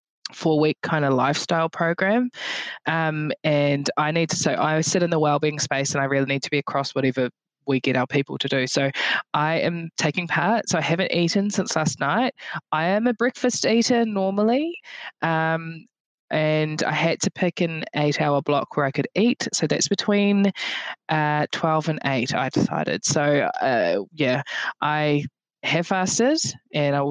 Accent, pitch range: Australian, 145-180 Hz